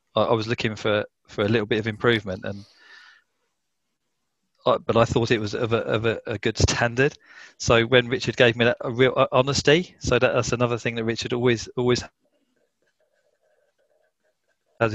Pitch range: 115-130 Hz